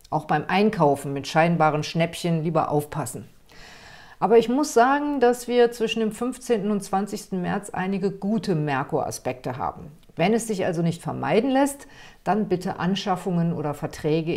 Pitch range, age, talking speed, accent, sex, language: 155-205 Hz, 50-69, 150 wpm, German, female, German